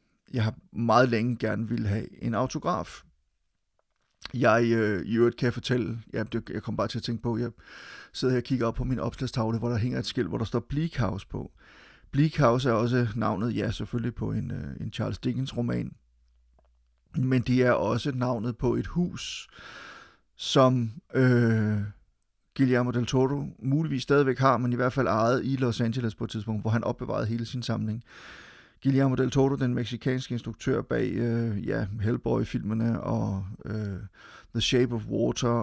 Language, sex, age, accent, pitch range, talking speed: Danish, male, 30-49, native, 110-125 Hz, 180 wpm